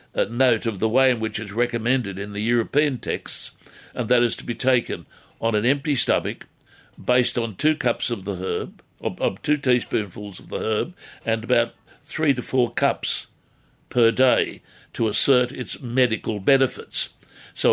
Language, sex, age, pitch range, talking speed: English, male, 60-79, 110-130 Hz, 170 wpm